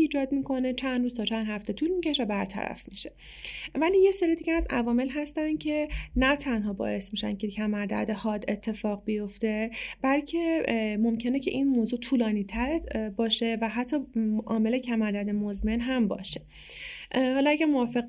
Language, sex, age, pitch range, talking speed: Persian, female, 30-49, 215-255 Hz, 155 wpm